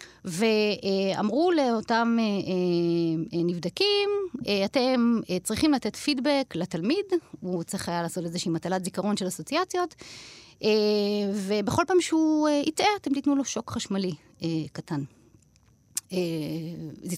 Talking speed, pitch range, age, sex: 100 wpm, 170-260 Hz, 30-49, female